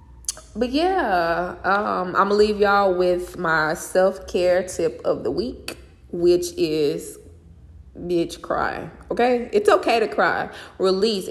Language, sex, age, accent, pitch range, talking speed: English, female, 20-39, American, 155-210 Hz, 135 wpm